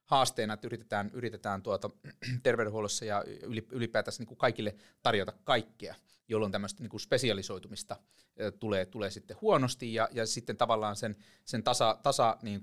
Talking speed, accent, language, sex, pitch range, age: 140 wpm, native, Finnish, male, 100-120 Hz, 30-49